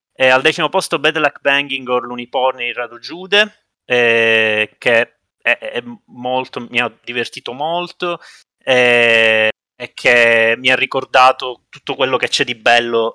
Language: Italian